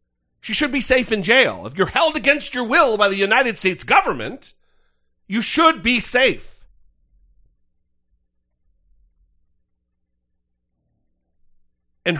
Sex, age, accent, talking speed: male, 40-59, American, 110 wpm